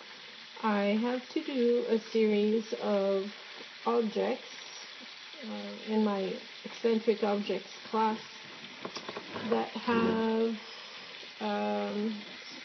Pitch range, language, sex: 210-240 Hz, English, female